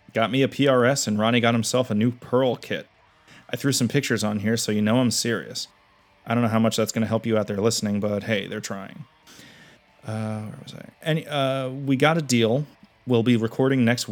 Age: 30-49